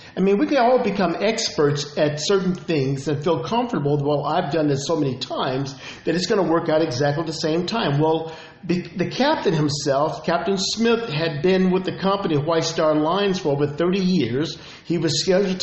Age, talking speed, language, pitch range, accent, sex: 50-69, 195 wpm, English, 155-200 Hz, American, male